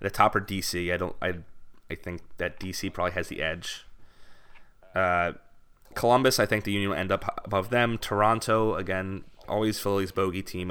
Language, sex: English, male